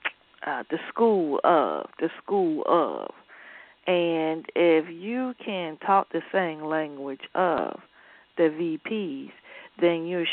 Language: English